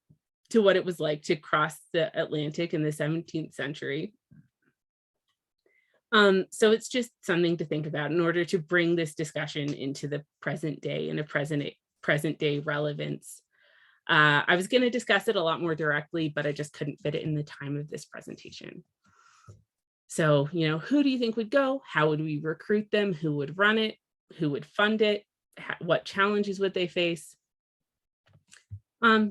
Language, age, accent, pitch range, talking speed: English, 30-49, American, 150-210 Hz, 180 wpm